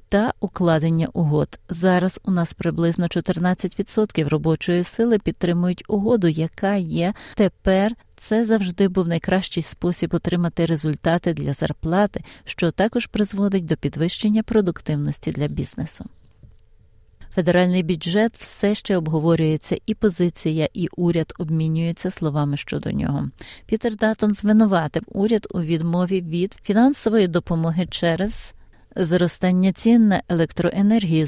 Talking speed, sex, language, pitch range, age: 115 wpm, female, Ukrainian, 165-200 Hz, 40-59